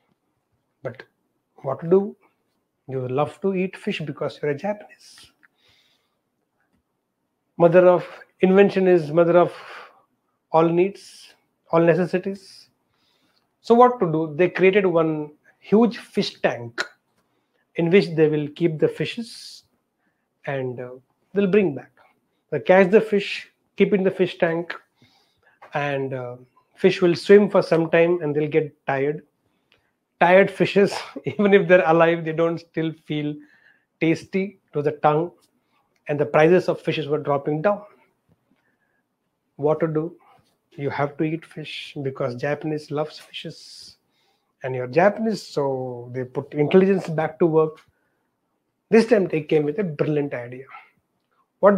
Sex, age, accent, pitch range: male, 30-49, Indian, 150-185 Hz